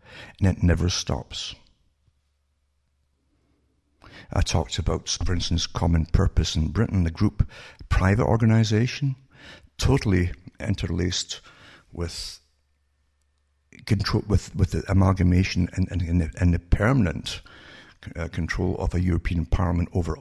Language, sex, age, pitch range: English, male, 60-79, 85-110 Hz